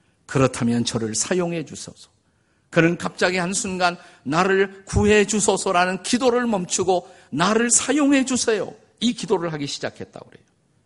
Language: Korean